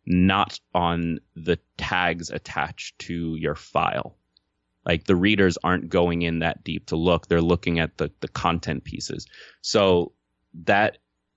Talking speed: 145 wpm